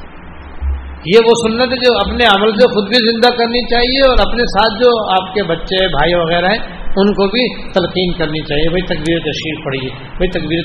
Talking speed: 190 wpm